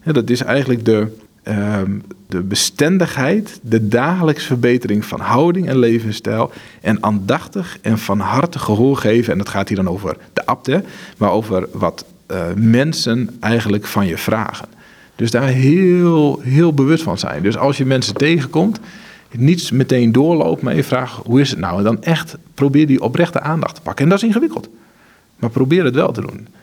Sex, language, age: male, Dutch, 40-59